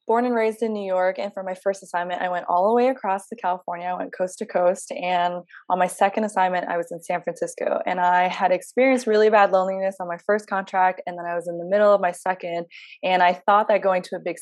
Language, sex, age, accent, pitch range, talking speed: English, female, 20-39, American, 180-200 Hz, 260 wpm